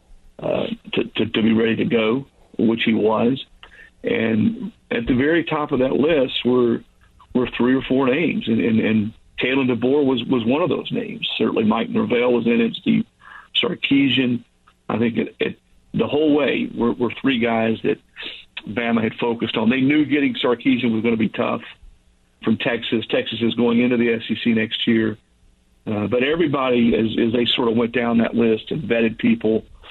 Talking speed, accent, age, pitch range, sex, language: 190 wpm, American, 50-69, 115-135 Hz, male, English